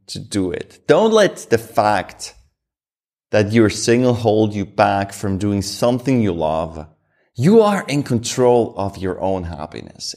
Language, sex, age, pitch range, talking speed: English, male, 30-49, 105-145 Hz, 155 wpm